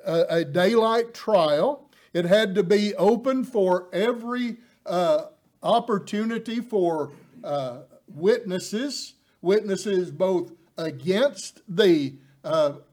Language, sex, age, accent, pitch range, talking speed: English, male, 60-79, American, 185-240 Hz, 95 wpm